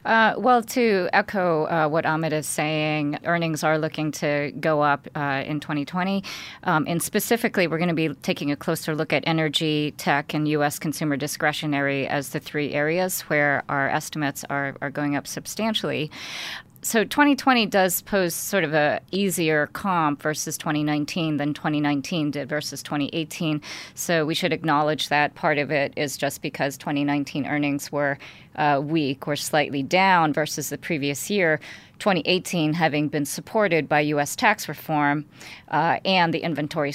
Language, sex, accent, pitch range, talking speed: English, female, American, 145-170 Hz, 160 wpm